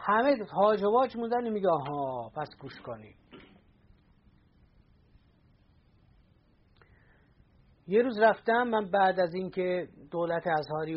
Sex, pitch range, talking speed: male, 155-220 Hz, 95 wpm